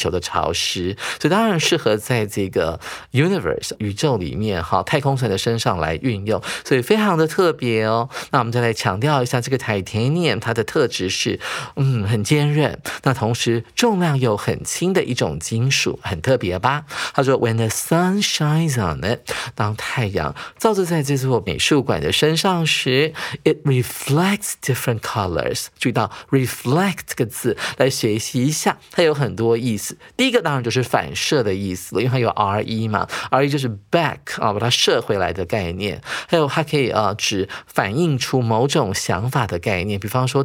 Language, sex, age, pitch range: Chinese, male, 50-69, 110-150 Hz